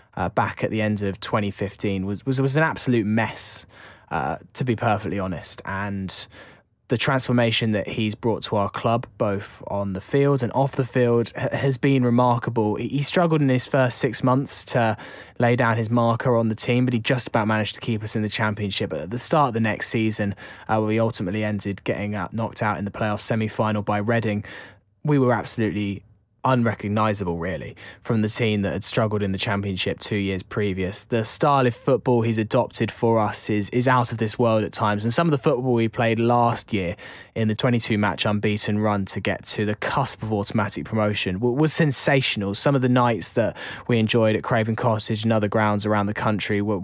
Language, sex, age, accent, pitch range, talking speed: English, male, 10-29, British, 105-120 Hz, 205 wpm